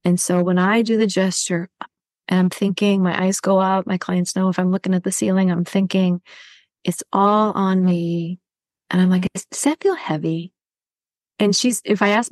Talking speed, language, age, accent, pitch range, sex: 195 wpm, English, 30-49, American, 180-210 Hz, female